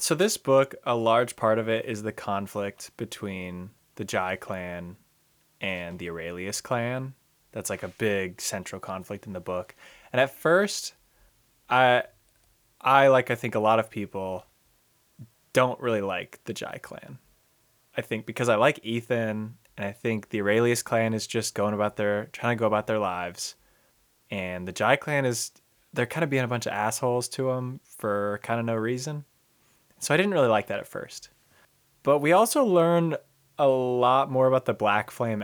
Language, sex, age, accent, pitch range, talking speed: English, male, 20-39, American, 105-130 Hz, 185 wpm